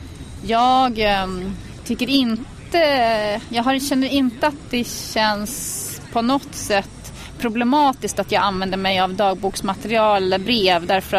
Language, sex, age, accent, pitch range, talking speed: Swedish, female, 30-49, native, 185-235 Hz, 120 wpm